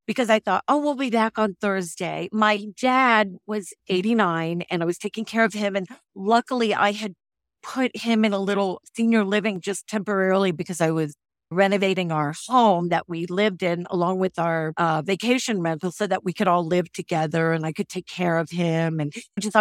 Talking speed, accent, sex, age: 200 wpm, American, female, 50-69